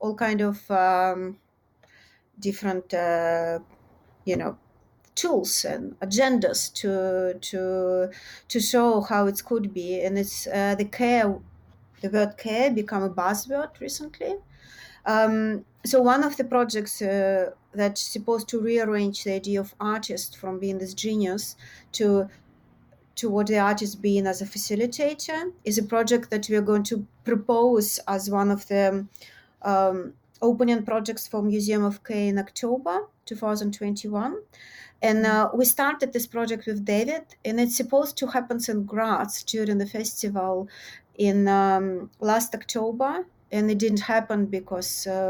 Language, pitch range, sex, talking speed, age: English, 195-235 Hz, female, 145 wpm, 30-49